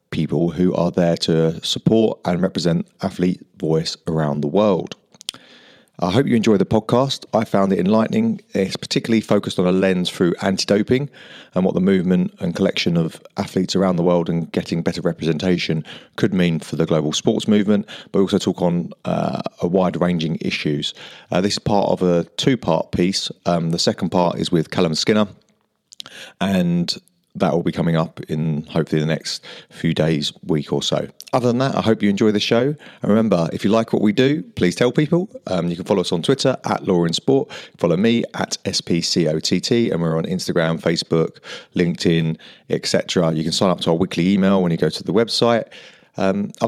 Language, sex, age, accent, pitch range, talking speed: English, male, 30-49, British, 85-115 Hz, 195 wpm